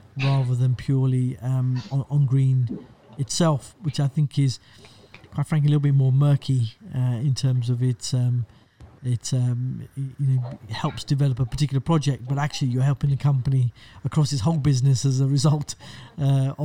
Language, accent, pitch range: English, British, 130-150 Hz